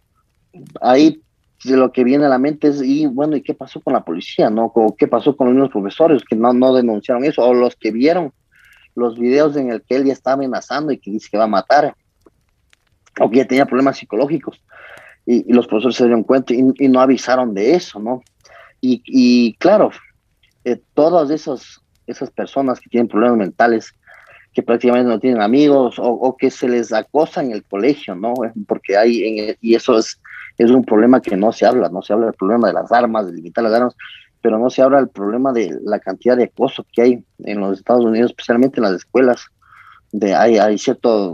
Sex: male